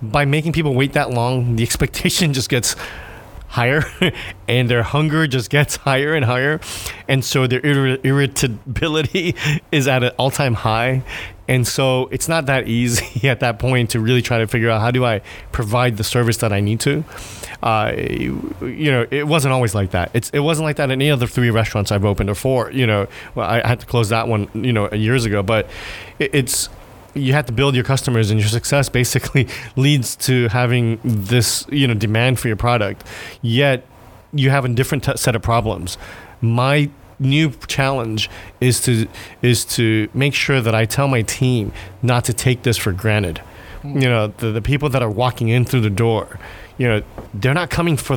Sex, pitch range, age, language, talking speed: male, 110-135 Hz, 30-49, English, 195 wpm